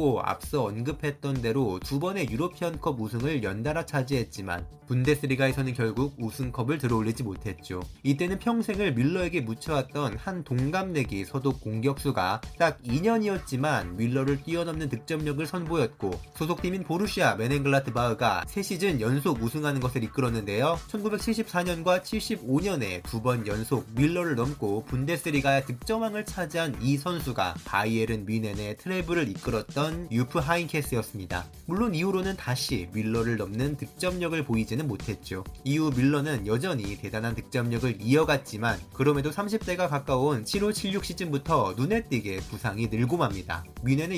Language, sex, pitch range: Korean, male, 115-165 Hz